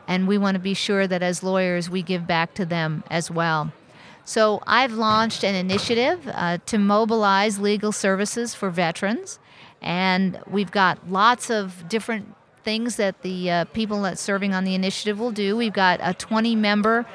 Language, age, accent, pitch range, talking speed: English, 50-69, American, 185-215 Hz, 175 wpm